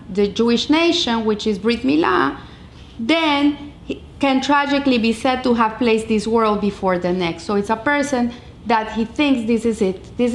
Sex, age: female, 40-59